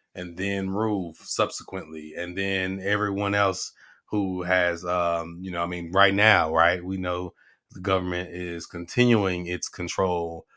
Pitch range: 90-115 Hz